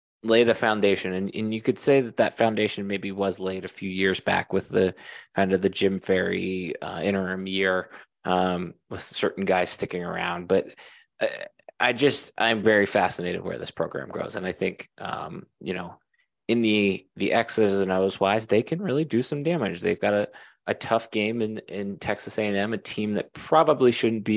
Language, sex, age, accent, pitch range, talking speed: English, male, 20-39, American, 100-135 Hz, 195 wpm